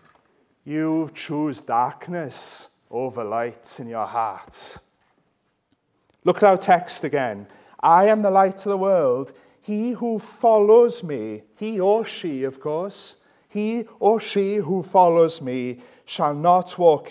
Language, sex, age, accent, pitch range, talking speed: English, male, 30-49, British, 165-210 Hz, 135 wpm